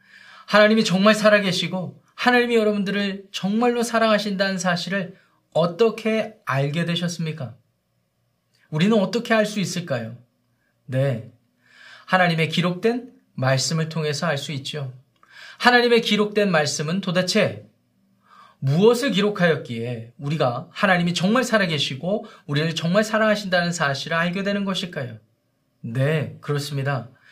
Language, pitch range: Korean, 150-200 Hz